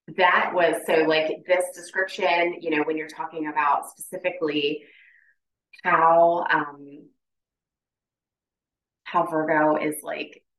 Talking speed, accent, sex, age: 110 wpm, American, female, 30-49